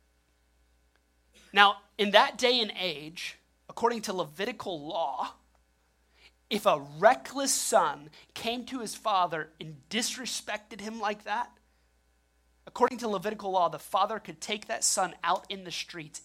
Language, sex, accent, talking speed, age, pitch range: English, male, American, 135 wpm, 30-49, 140-220 Hz